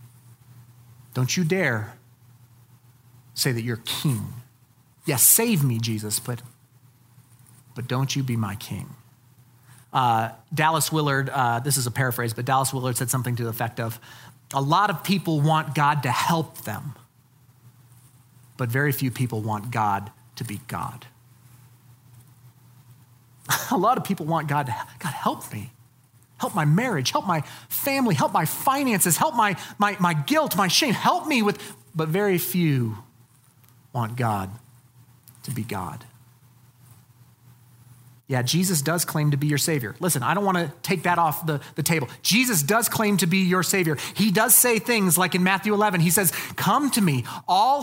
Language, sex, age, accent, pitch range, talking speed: English, male, 40-59, American, 125-200 Hz, 165 wpm